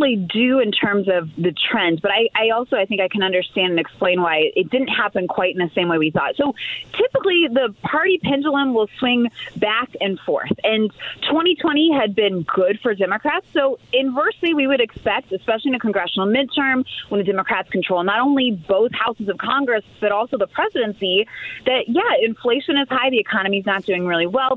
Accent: American